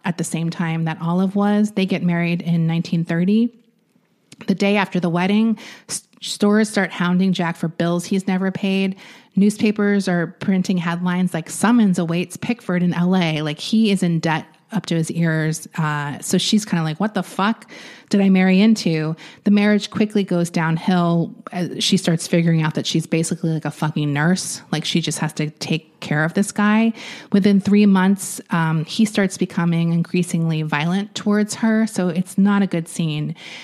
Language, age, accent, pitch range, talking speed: English, 30-49, American, 165-205 Hz, 180 wpm